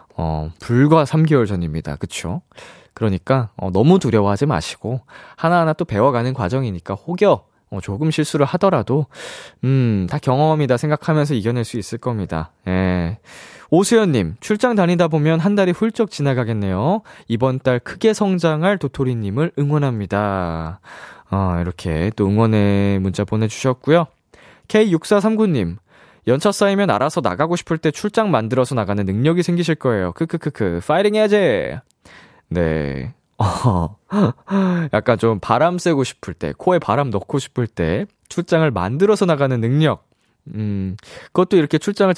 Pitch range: 100-170 Hz